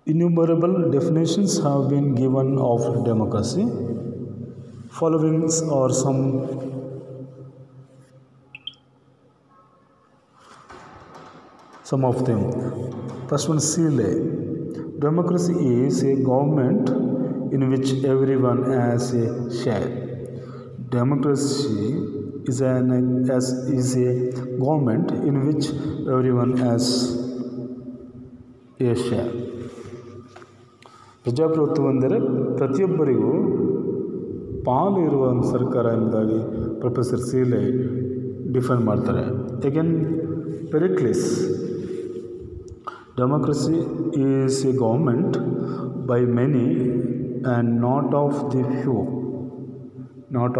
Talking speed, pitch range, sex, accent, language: 75 wpm, 125-140 Hz, male, native, Kannada